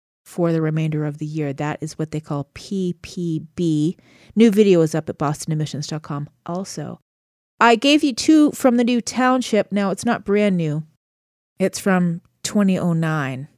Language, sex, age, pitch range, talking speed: English, female, 30-49, 155-215 Hz, 155 wpm